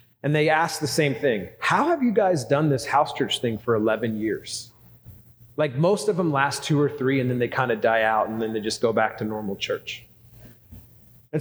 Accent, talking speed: American, 225 wpm